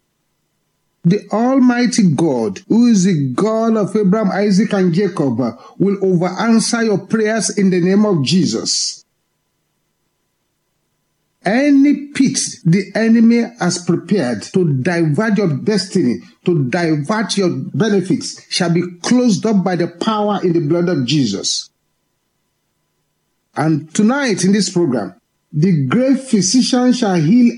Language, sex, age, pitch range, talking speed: English, male, 50-69, 180-230 Hz, 125 wpm